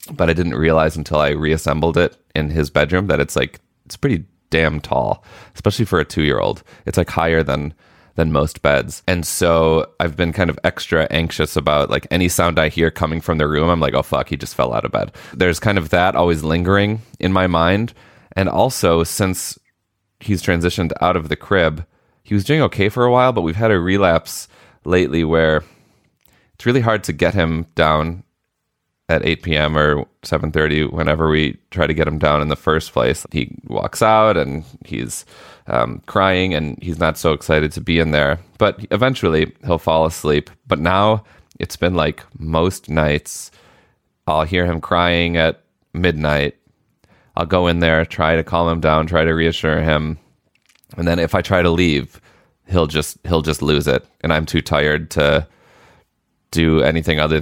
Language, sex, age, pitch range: English, male, 20-39, 75-90 Hz